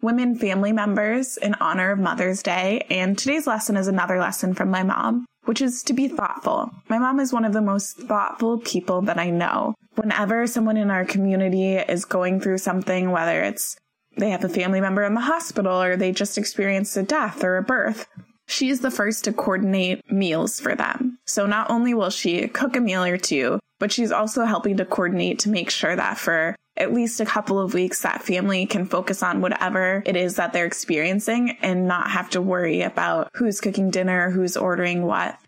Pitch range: 185-230 Hz